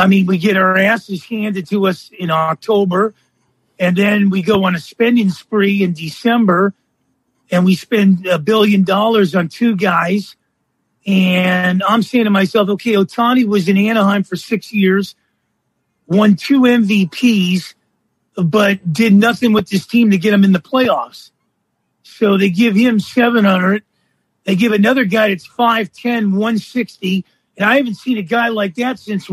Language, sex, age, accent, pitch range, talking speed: English, male, 40-59, American, 195-235 Hz, 160 wpm